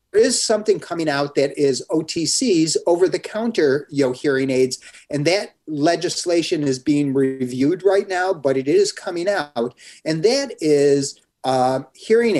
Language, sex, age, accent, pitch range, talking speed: English, male, 40-59, American, 135-185 Hz, 145 wpm